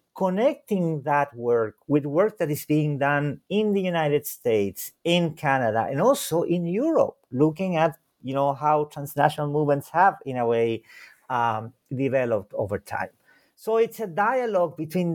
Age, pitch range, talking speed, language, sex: 50-69, 130-175 Hz, 155 wpm, English, male